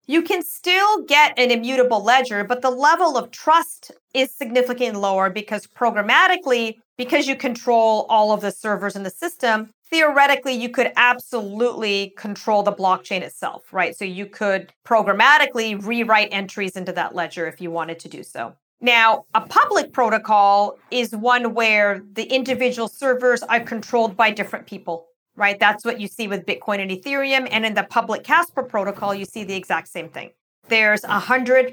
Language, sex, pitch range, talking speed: English, female, 205-260 Hz, 170 wpm